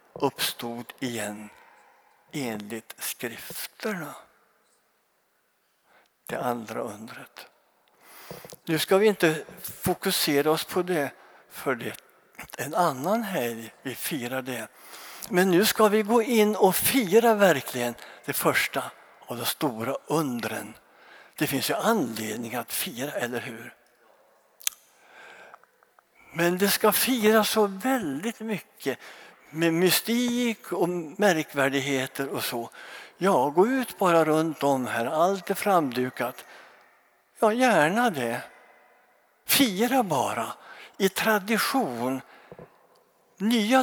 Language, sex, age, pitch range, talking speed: Swedish, male, 60-79, 130-215 Hz, 105 wpm